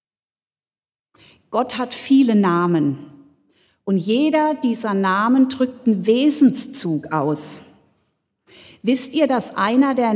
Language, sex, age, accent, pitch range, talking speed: German, female, 40-59, German, 185-235 Hz, 100 wpm